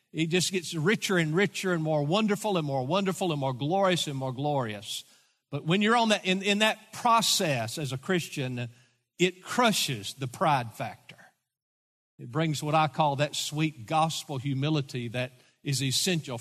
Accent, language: American, English